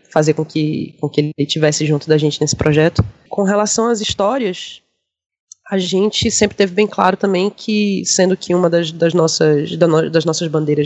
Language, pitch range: Portuguese, 160-195 Hz